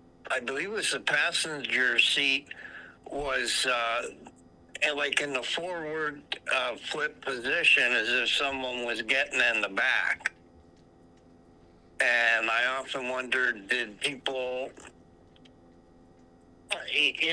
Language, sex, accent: English, male, American